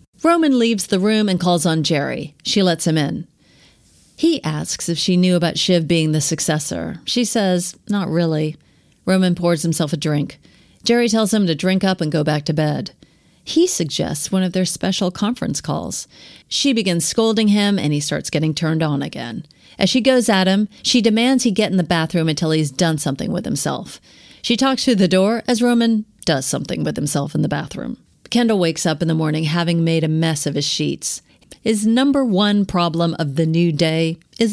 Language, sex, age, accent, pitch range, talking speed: English, female, 40-59, American, 155-215 Hz, 200 wpm